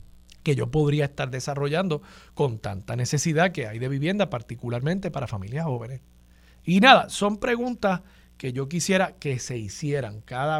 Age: 40-59